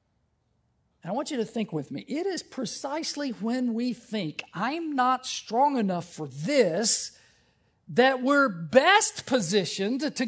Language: English